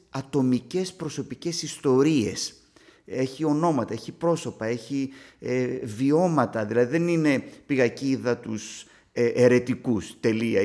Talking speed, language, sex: 105 wpm, Greek, male